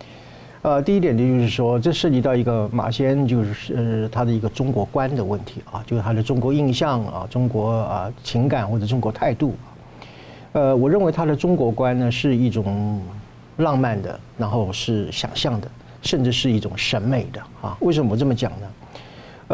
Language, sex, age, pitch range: Chinese, male, 50-69, 110-140 Hz